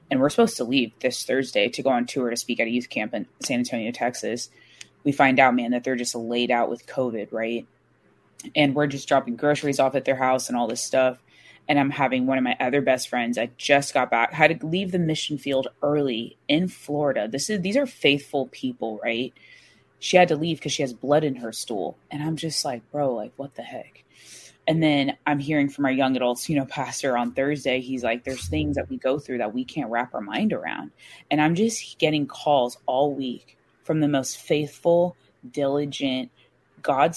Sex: female